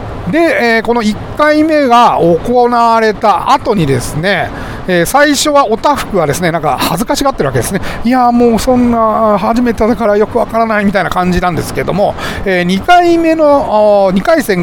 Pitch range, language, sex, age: 180-270 Hz, Japanese, male, 40-59